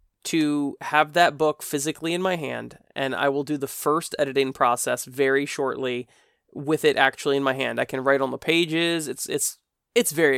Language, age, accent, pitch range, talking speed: English, 20-39, American, 140-165 Hz, 195 wpm